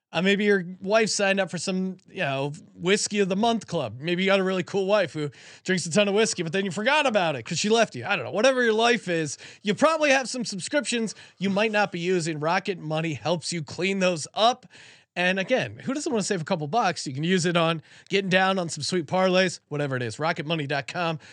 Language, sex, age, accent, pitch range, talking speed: English, male, 30-49, American, 155-205 Hz, 245 wpm